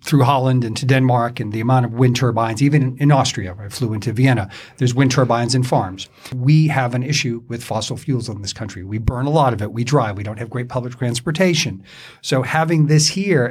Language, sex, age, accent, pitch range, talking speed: English, male, 50-69, American, 120-145 Hz, 225 wpm